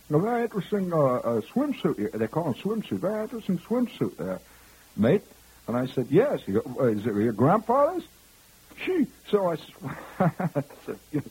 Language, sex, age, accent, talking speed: English, male, 60-79, American, 150 wpm